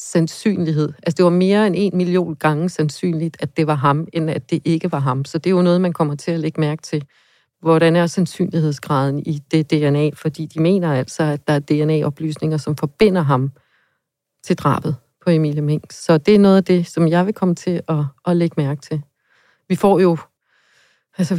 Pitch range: 150-180 Hz